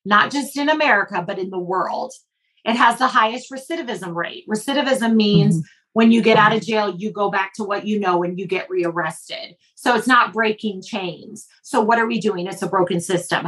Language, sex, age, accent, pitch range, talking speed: English, female, 40-59, American, 205-265 Hz, 210 wpm